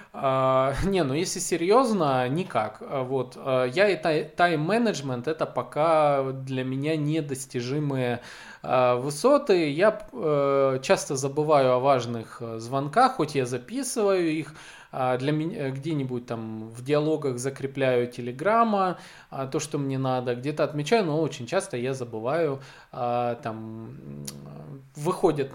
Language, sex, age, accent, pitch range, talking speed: Russian, male, 20-39, native, 125-175 Hz, 125 wpm